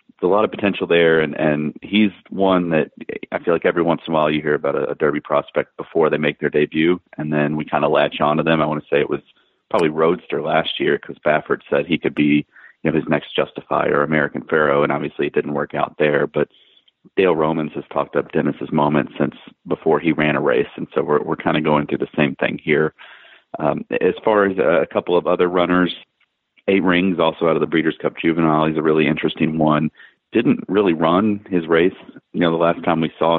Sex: male